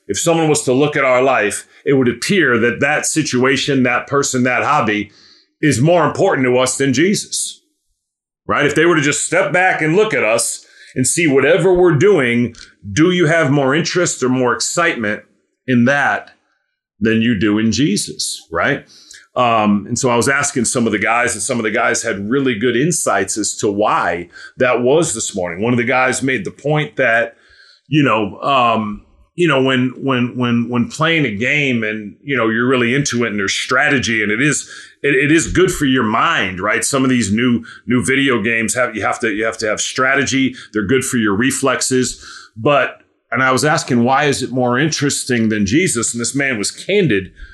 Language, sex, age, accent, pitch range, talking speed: English, male, 40-59, American, 120-145 Hz, 205 wpm